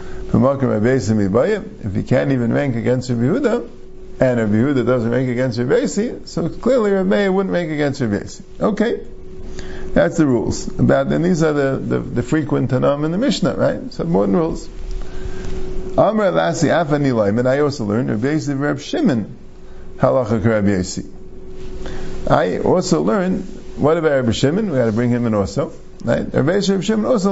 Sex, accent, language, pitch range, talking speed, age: male, American, English, 115-155 Hz, 155 wpm, 50-69